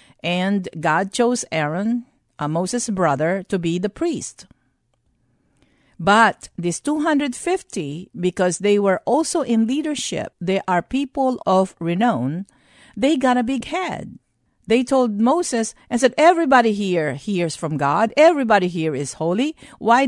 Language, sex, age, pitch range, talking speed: English, female, 50-69, 175-255 Hz, 135 wpm